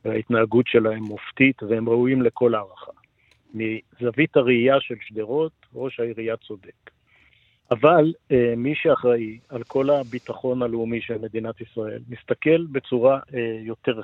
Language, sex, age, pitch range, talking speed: Hebrew, male, 50-69, 110-135 Hz, 115 wpm